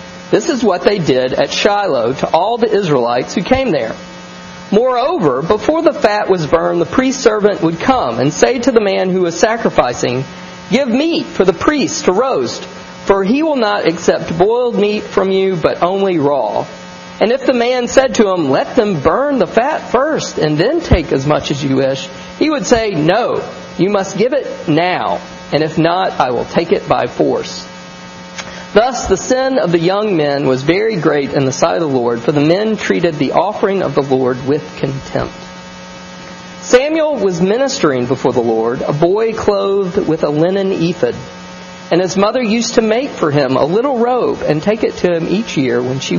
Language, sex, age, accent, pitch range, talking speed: English, male, 40-59, American, 135-225 Hz, 195 wpm